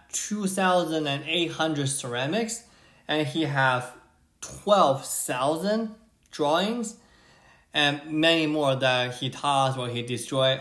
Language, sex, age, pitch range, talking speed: English, male, 20-39, 125-170 Hz, 90 wpm